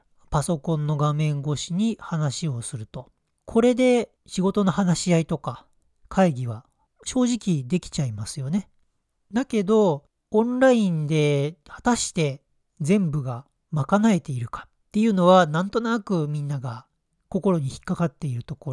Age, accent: 40-59, native